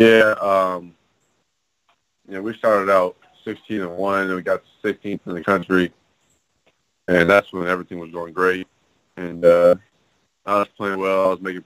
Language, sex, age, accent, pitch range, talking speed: English, male, 30-49, American, 90-100 Hz, 180 wpm